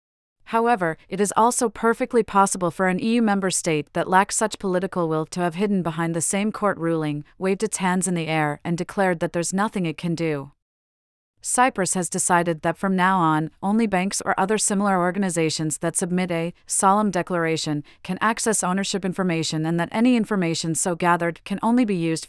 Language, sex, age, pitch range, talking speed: English, female, 40-59, 170-205 Hz, 190 wpm